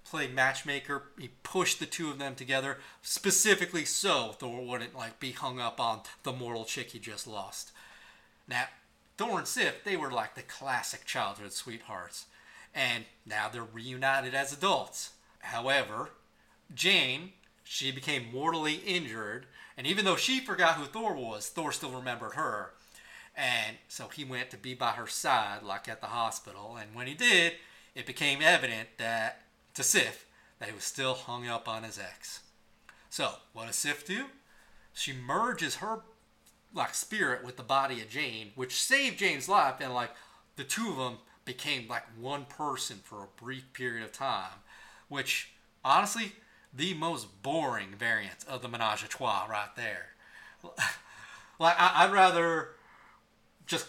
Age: 30-49